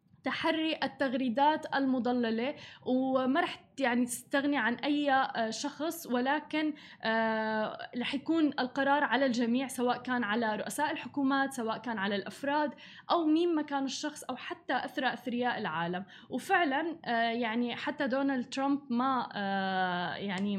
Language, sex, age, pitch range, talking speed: Arabic, female, 20-39, 235-280 Hz, 120 wpm